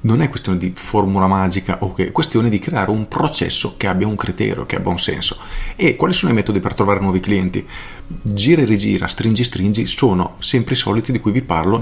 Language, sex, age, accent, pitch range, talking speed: Italian, male, 40-59, native, 95-120 Hz, 235 wpm